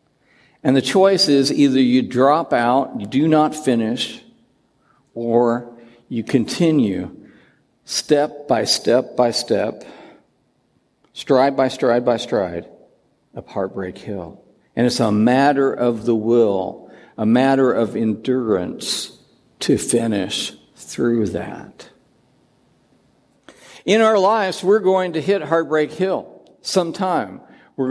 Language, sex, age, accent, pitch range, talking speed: English, male, 60-79, American, 130-185 Hz, 115 wpm